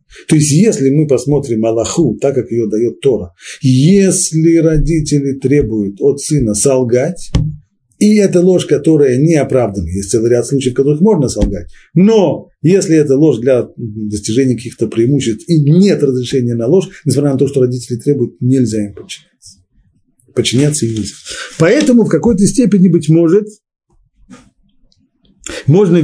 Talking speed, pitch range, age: 145 wpm, 110-155 Hz, 40-59